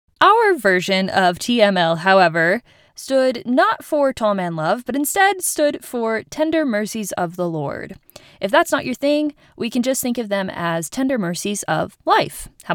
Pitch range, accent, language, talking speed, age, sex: 195-285 Hz, American, English, 175 wpm, 20-39, female